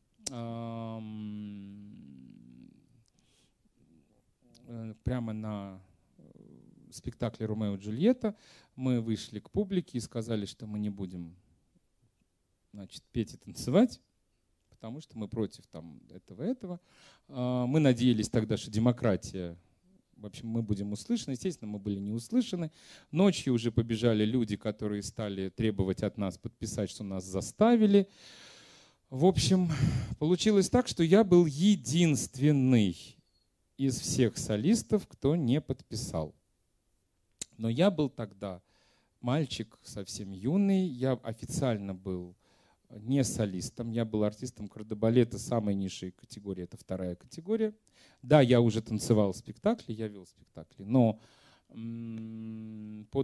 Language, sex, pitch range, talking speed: Russian, male, 100-135 Hz, 115 wpm